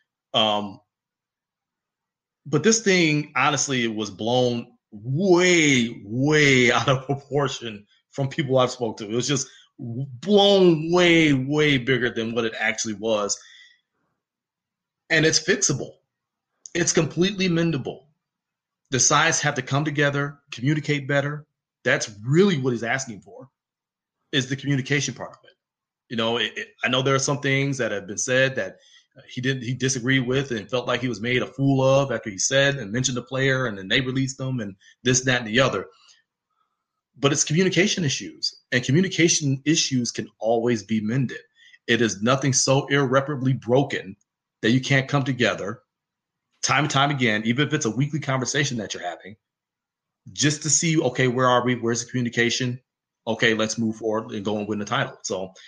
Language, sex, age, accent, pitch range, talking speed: English, male, 30-49, American, 120-150 Hz, 170 wpm